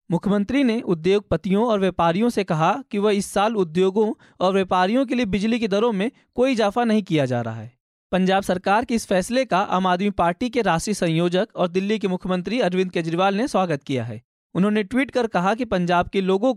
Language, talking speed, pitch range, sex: Hindi, 205 wpm, 180-225 Hz, male